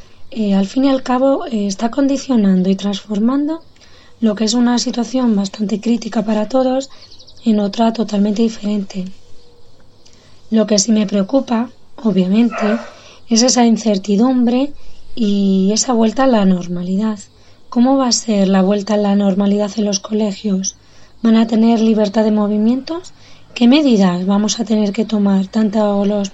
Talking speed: 150 wpm